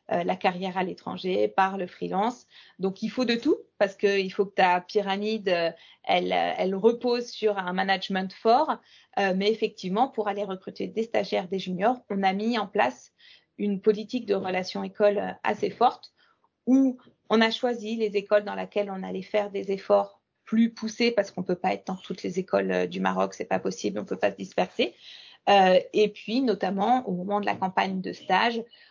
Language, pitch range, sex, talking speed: French, 190-225 Hz, female, 195 wpm